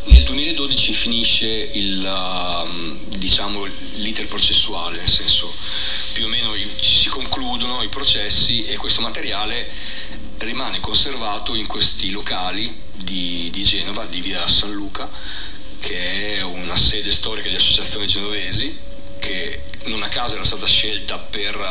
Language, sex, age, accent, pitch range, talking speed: Italian, male, 40-59, native, 90-105 Hz, 130 wpm